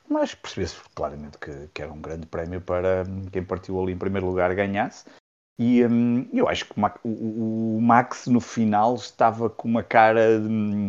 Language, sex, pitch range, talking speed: Portuguese, male, 95-115 Hz, 170 wpm